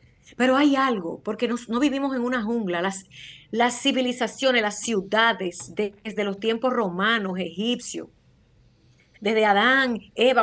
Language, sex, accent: Spanish, female, American